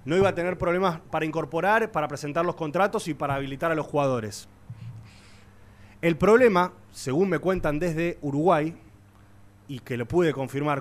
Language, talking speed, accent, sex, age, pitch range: Spanish, 160 wpm, Argentinian, male, 20-39, 105-170 Hz